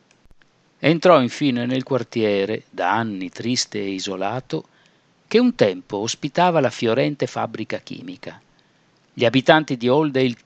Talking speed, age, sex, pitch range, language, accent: 120 wpm, 50-69, male, 105-150 Hz, Italian, native